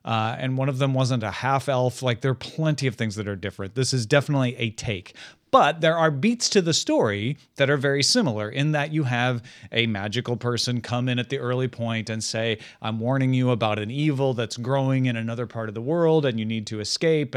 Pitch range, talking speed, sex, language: 115-145 Hz, 235 wpm, male, English